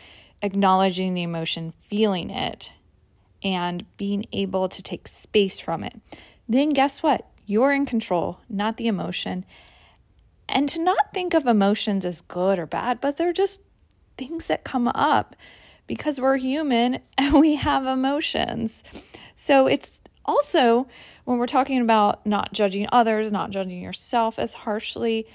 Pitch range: 195-265 Hz